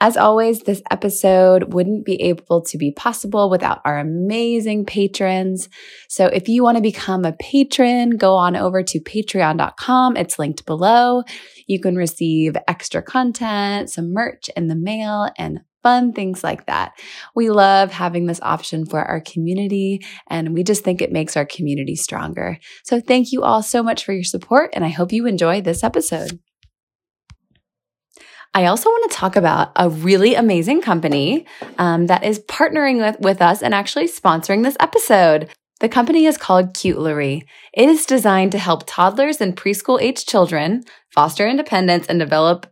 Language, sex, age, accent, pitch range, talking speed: English, female, 20-39, American, 175-230 Hz, 165 wpm